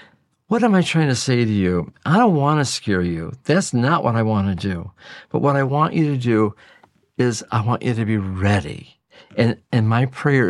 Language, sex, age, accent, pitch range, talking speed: English, male, 50-69, American, 105-135 Hz, 225 wpm